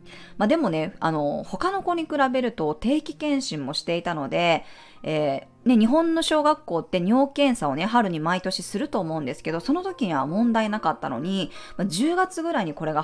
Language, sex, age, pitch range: Japanese, female, 20-39, 160-240 Hz